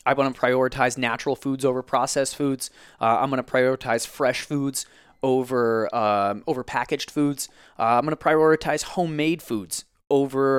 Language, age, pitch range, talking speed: English, 20-39, 120-140 Hz, 165 wpm